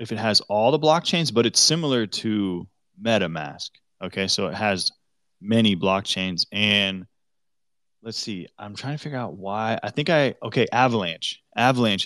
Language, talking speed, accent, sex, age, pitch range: English, 160 wpm, American, male, 20-39, 95-115 Hz